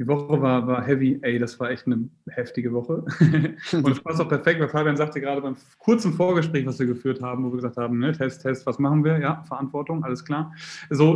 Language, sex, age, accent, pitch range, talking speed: German, male, 30-49, German, 125-145 Hz, 230 wpm